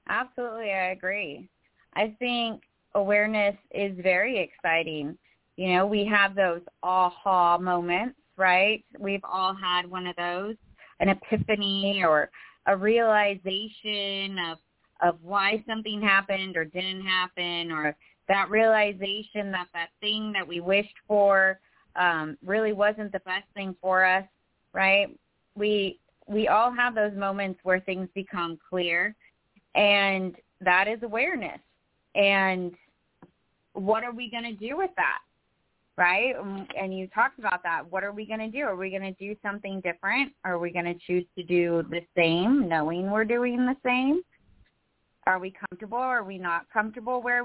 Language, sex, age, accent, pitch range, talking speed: English, female, 20-39, American, 185-215 Hz, 150 wpm